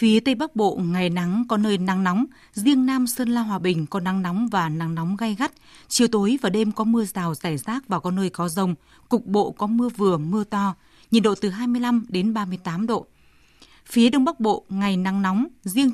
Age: 20-39